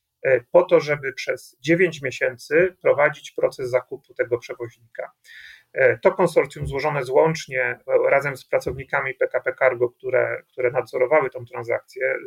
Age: 40-59